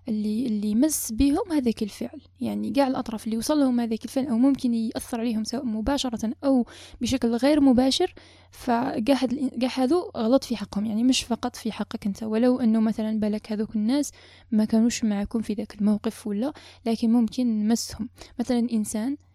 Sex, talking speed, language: female, 160 wpm, Arabic